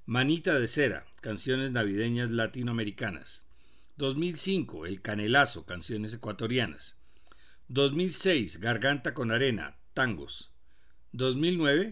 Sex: male